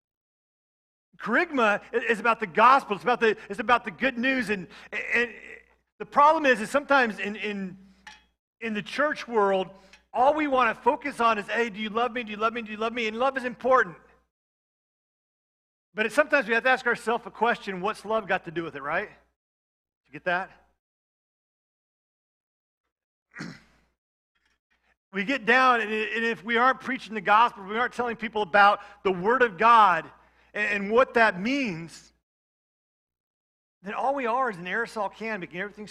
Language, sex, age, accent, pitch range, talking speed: English, male, 40-59, American, 190-235 Hz, 175 wpm